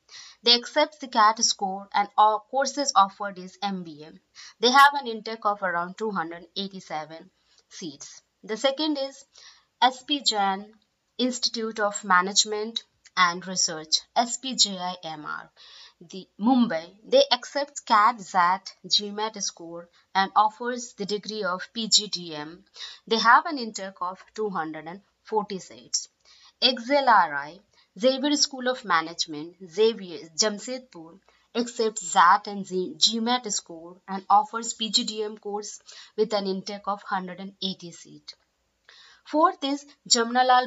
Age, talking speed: 30-49, 105 wpm